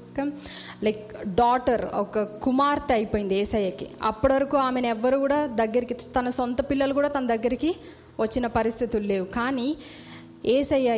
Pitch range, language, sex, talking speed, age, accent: 210-245 Hz, Telugu, female, 125 wpm, 20-39, native